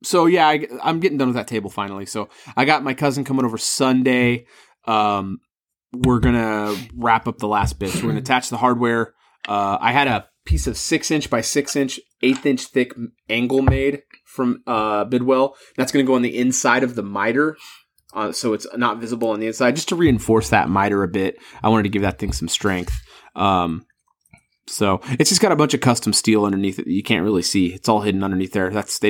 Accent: American